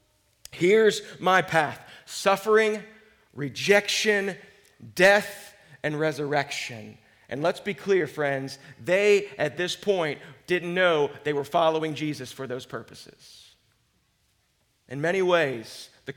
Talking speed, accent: 110 wpm, American